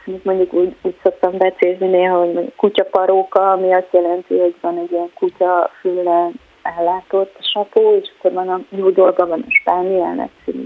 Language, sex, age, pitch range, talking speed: Hungarian, female, 30-49, 180-205 Hz, 160 wpm